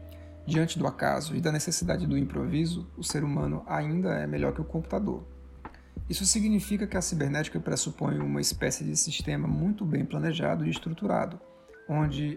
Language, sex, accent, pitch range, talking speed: Portuguese, male, Brazilian, 135-175 Hz, 160 wpm